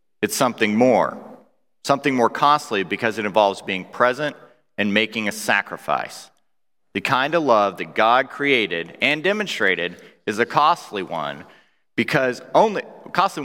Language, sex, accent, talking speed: English, male, American, 140 wpm